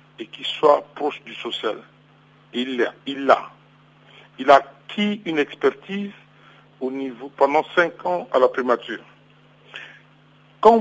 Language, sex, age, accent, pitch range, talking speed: French, male, 60-79, French, 130-175 Hz, 120 wpm